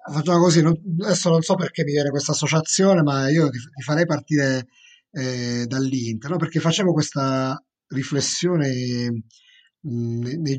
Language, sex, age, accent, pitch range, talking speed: Italian, male, 30-49, native, 125-155 Hz, 140 wpm